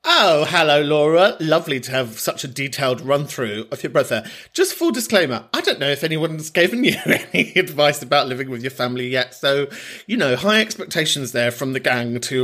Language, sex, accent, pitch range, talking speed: English, male, British, 130-185 Hz, 205 wpm